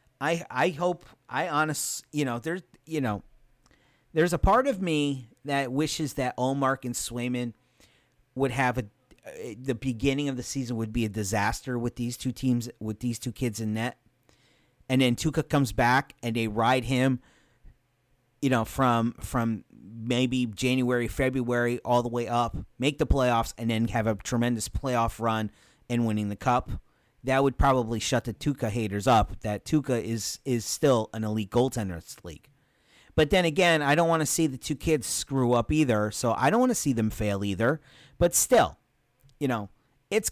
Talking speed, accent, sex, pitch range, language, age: 180 wpm, American, male, 115-145 Hz, English, 30-49